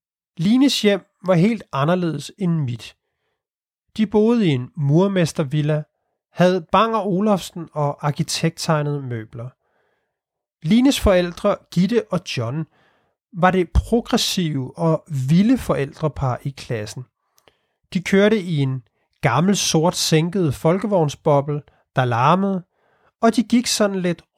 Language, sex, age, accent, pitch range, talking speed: Danish, male, 30-49, native, 145-195 Hz, 110 wpm